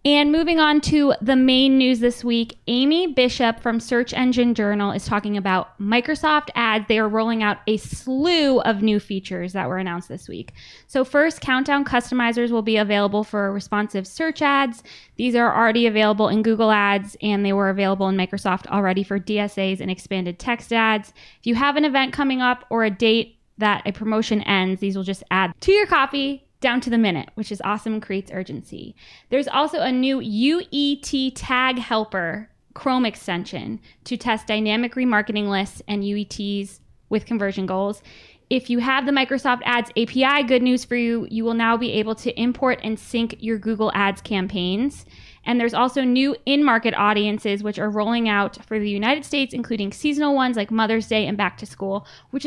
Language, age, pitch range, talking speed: English, 10-29, 205-255 Hz, 190 wpm